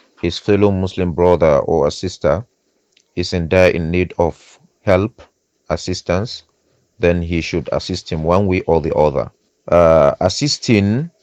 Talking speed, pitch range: 145 wpm, 90-105 Hz